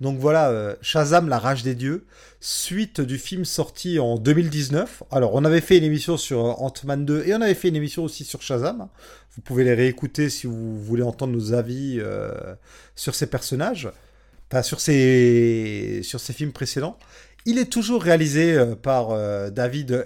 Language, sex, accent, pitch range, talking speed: French, male, French, 125-165 Hz, 175 wpm